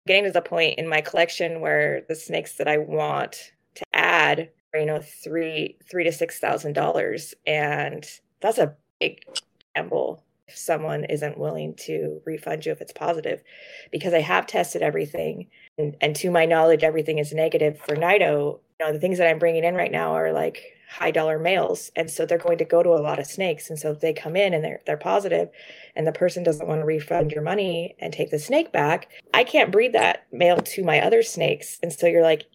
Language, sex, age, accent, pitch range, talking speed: English, female, 20-39, American, 155-195 Hz, 210 wpm